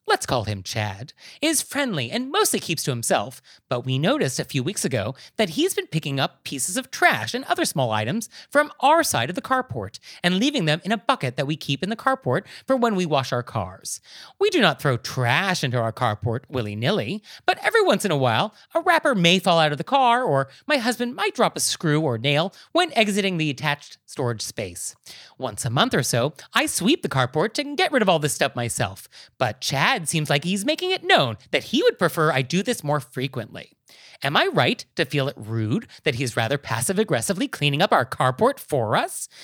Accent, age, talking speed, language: American, 30-49, 220 wpm, English